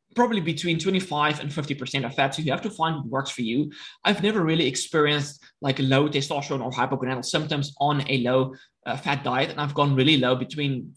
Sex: male